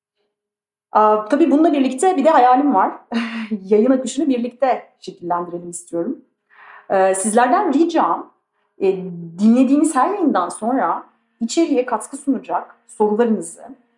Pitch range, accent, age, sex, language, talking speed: 210-280 Hz, native, 40-59, female, Turkish, 95 wpm